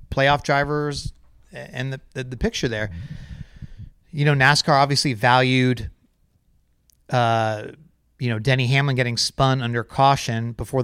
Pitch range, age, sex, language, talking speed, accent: 110-135 Hz, 30-49, male, English, 125 wpm, American